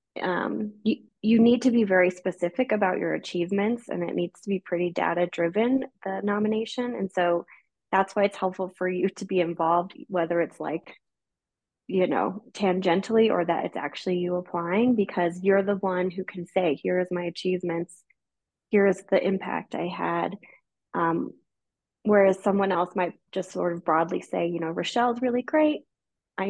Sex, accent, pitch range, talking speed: female, American, 180-220 Hz, 170 wpm